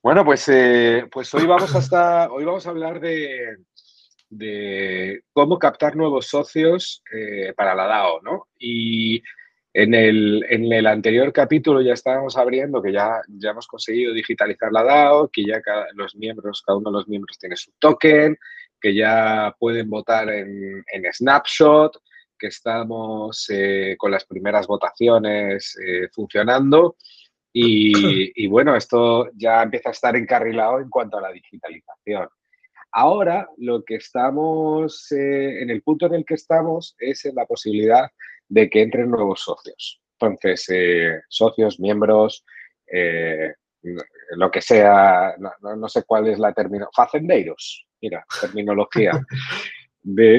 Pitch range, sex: 105-150 Hz, male